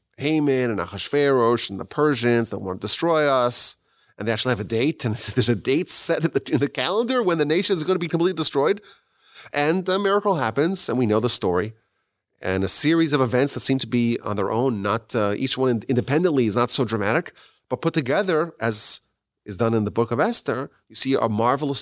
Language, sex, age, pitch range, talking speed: English, male, 30-49, 105-150 Hz, 225 wpm